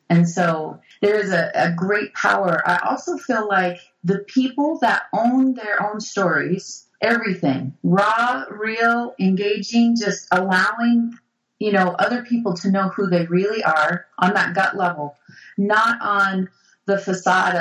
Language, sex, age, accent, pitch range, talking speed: English, female, 30-49, American, 180-225 Hz, 145 wpm